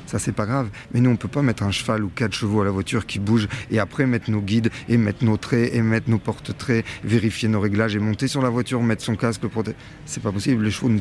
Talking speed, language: 285 wpm, French